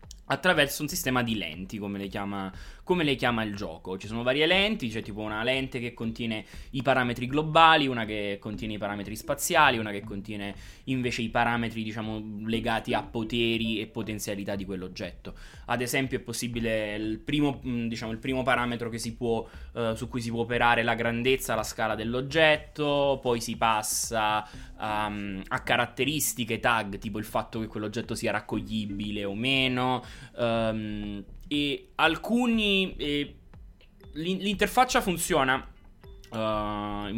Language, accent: Italian, native